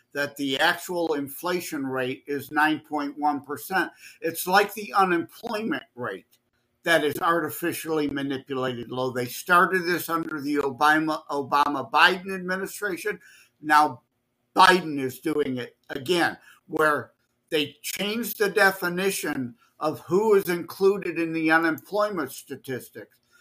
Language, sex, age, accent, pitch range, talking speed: English, male, 50-69, American, 140-190 Hz, 115 wpm